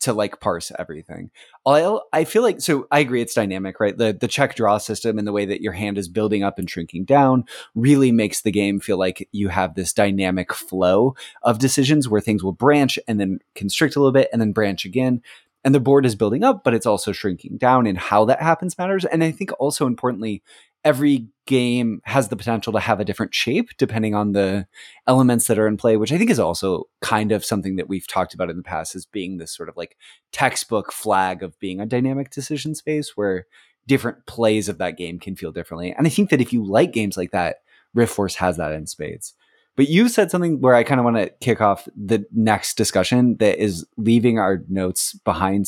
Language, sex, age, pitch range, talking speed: English, male, 20-39, 95-135 Hz, 225 wpm